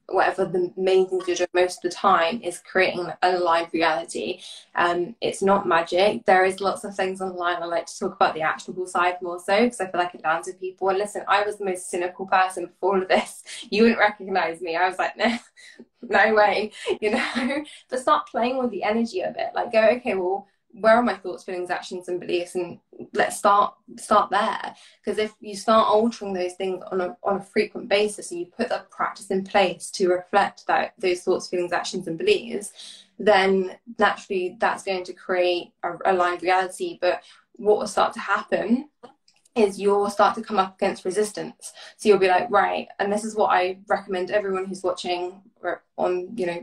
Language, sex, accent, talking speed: English, female, British, 210 wpm